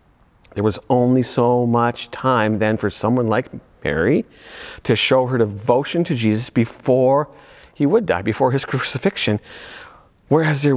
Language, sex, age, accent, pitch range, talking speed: English, male, 50-69, American, 105-140 Hz, 145 wpm